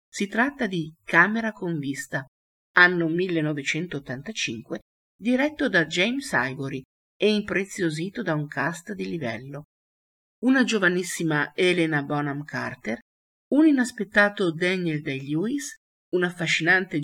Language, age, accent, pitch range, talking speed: Italian, 50-69, native, 150-210 Hz, 105 wpm